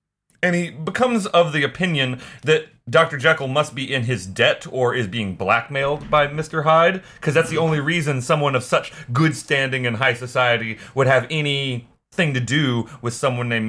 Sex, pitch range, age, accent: male, 125-165 Hz, 30-49, American